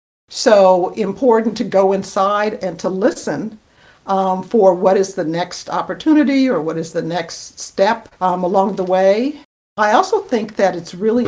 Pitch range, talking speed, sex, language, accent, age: 170-220 Hz, 165 wpm, female, English, American, 60-79